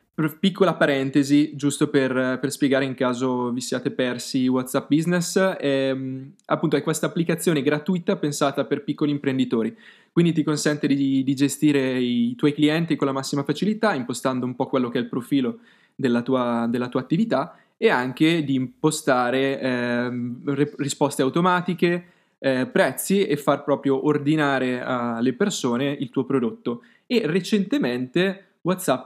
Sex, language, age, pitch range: male, Italian, 20-39, 130-160 Hz